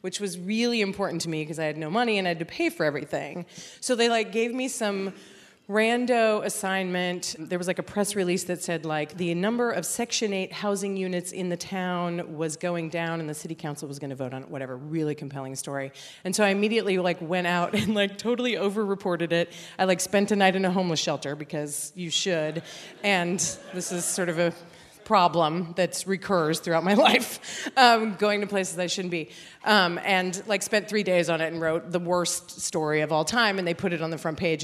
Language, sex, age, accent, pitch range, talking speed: English, female, 30-49, American, 165-210 Hz, 225 wpm